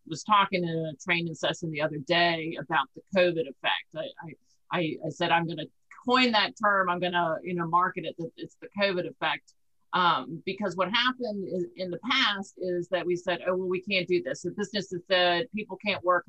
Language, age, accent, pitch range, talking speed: English, 50-69, American, 165-190 Hz, 220 wpm